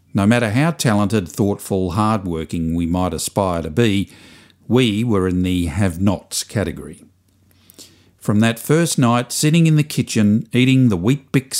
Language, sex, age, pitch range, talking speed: English, male, 50-69, 90-115 Hz, 150 wpm